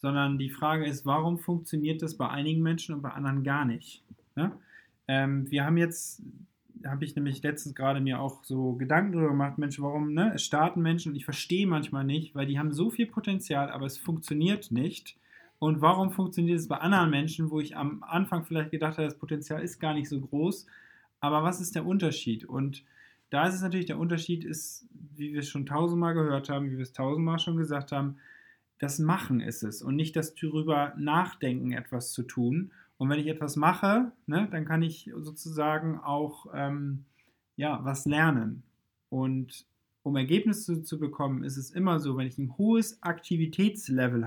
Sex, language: male, German